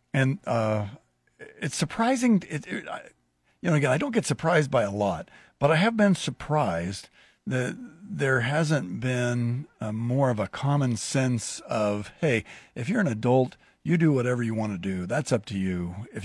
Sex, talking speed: male, 185 wpm